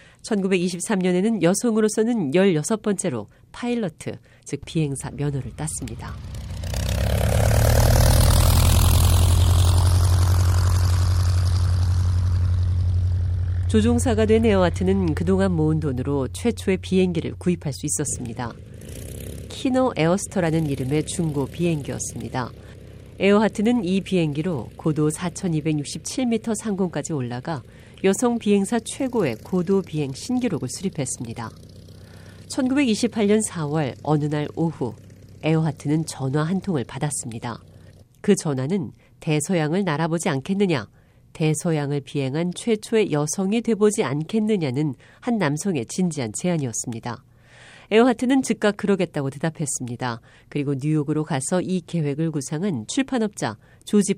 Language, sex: Korean, female